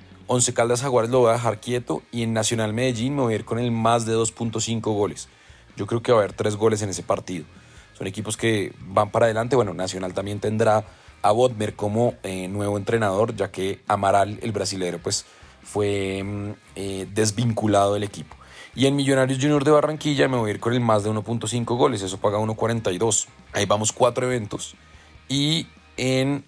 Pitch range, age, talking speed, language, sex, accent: 100-130 Hz, 30-49, 195 wpm, Spanish, male, Colombian